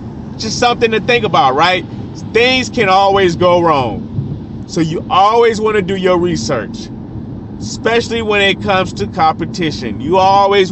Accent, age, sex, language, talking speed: American, 30-49, male, English, 150 wpm